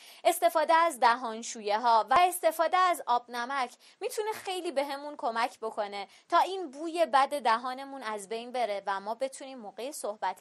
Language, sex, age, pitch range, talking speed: Persian, female, 20-39, 220-315 Hz, 160 wpm